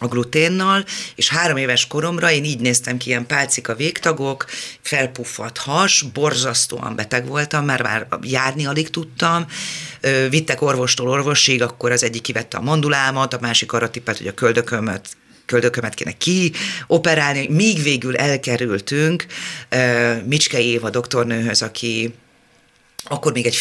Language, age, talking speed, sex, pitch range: Hungarian, 30-49, 135 wpm, female, 120-150 Hz